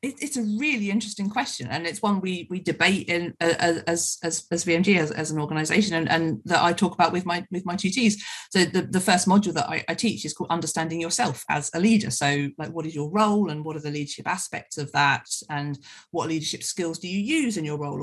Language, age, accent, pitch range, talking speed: English, 40-59, British, 160-215 Hz, 240 wpm